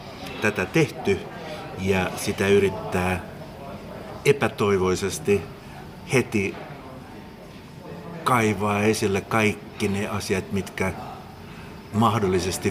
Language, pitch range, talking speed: Finnish, 95-110 Hz, 65 wpm